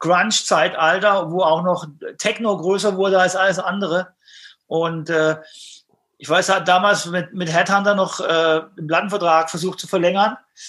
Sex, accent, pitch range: male, German, 160-195 Hz